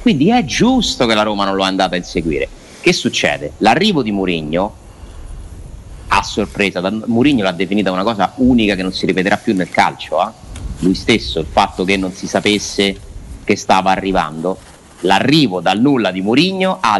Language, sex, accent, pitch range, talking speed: Italian, male, native, 95-160 Hz, 175 wpm